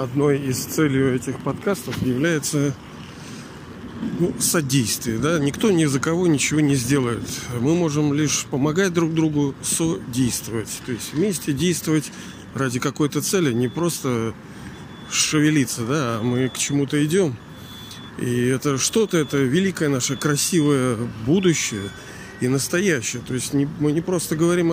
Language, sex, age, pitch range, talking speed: Russian, male, 40-59, 125-160 Hz, 130 wpm